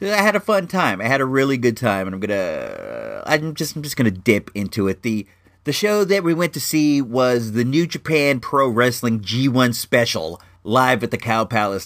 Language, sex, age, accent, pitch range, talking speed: English, male, 40-59, American, 110-170 Hz, 220 wpm